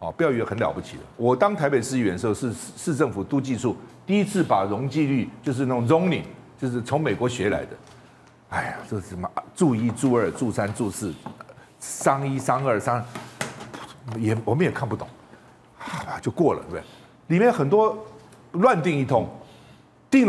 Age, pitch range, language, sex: 50-69, 125-195 Hz, Chinese, male